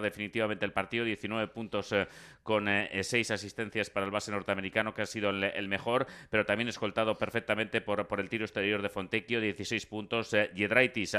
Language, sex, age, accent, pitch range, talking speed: Spanish, male, 30-49, Spanish, 100-115 Hz, 190 wpm